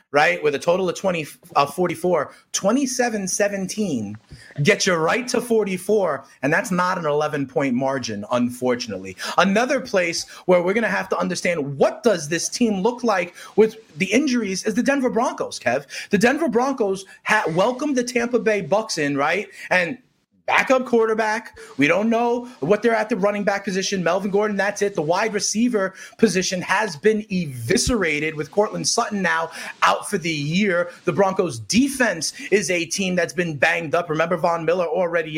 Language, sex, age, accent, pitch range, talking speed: English, male, 30-49, American, 165-220 Hz, 175 wpm